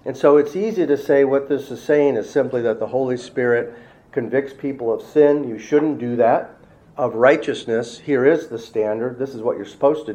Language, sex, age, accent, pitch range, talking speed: English, male, 50-69, American, 120-150 Hz, 215 wpm